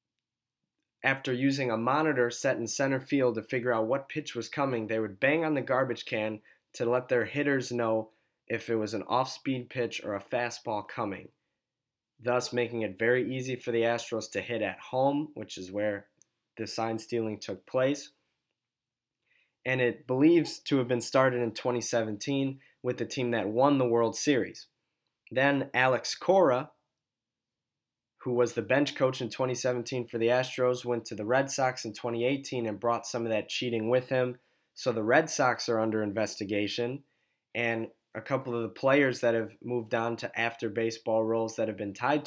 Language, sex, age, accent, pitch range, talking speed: English, male, 20-39, American, 115-130 Hz, 175 wpm